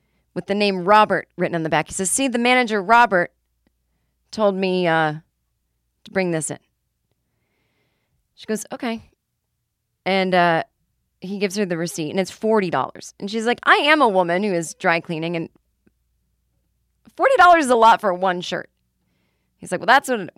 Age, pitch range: 30-49, 160-215 Hz